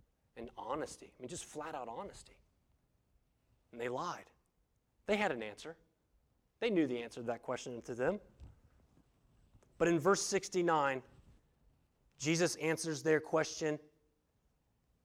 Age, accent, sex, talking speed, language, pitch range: 30-49, American, male, 125 wpm, English, 125-175 Hz